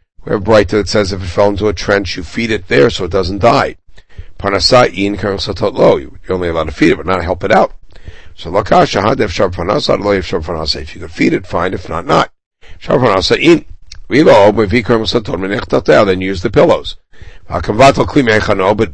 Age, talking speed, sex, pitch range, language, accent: 60-79, 145 wpm, male, 85-110 Hz, English, American